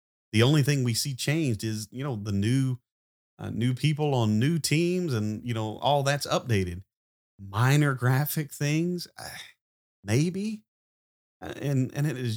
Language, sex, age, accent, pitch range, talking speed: English, male, 30-49, American, 105-150 Hz, 150 wpm